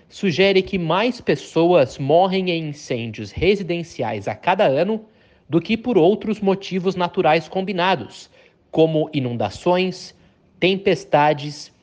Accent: Brazilian